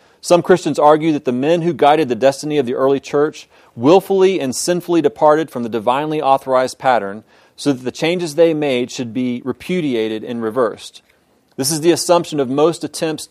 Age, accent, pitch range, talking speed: 30-49, American, 120-150 Hz, 185 wpm